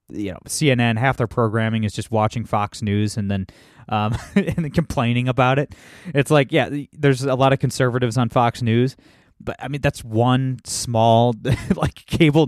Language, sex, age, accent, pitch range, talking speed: English, male, 20-39, American, 110-135 Hz, 185 wpm